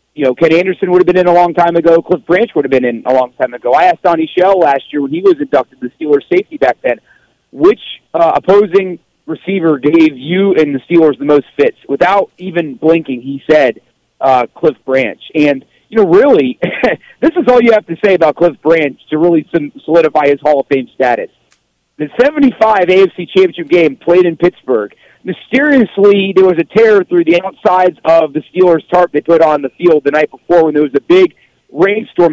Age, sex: 40-59, male